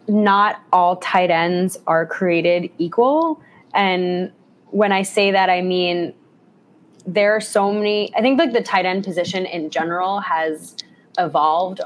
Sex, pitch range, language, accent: female, 165-200 Hz, English, American